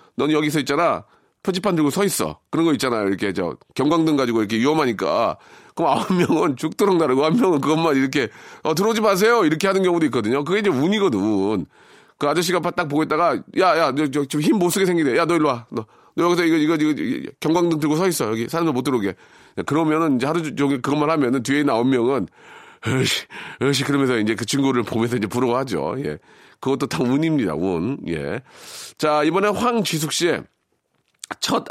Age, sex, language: 40-59, male, Korean